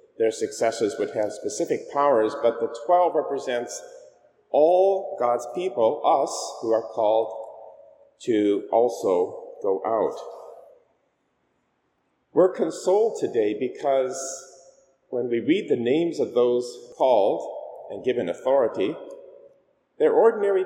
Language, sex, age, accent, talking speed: English, male, 40-59, American, 110 wpm